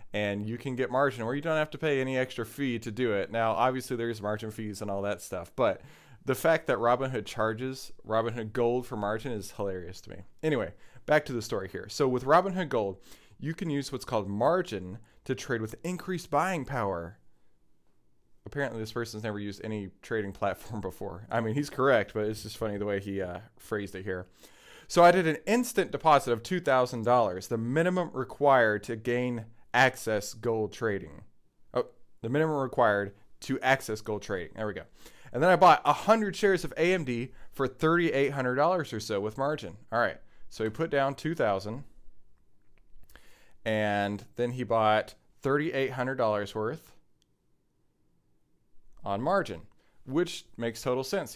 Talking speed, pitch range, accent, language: 185 wpm, 105-140 Hz, American, English